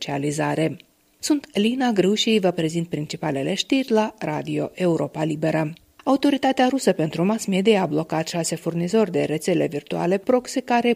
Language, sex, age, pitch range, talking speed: Romanian, female, 30-49, 160-220 Hz, 135 wpm